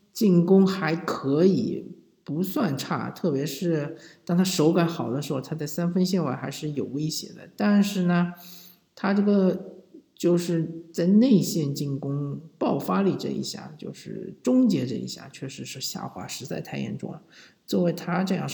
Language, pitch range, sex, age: Chinese, 145-180 Hz, male, 50-69